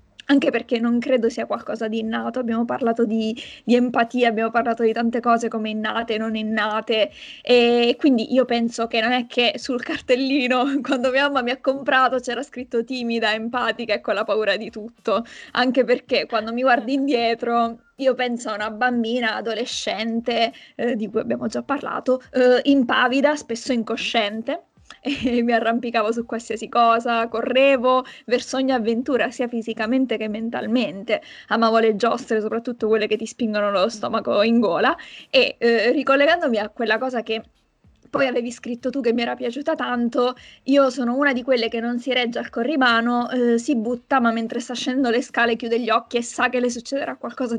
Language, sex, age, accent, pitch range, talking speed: Italian, female, 20-39, native, 230-255 Hz, 180 wpm